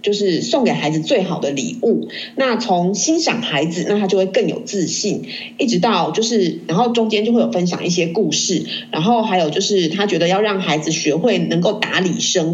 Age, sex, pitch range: 30-49, female, 175-230 Hz